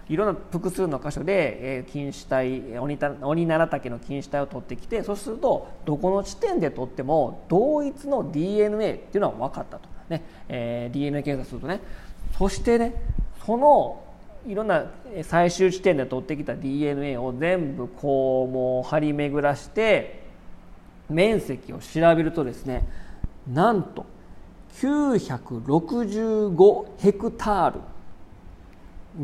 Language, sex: Japanese, male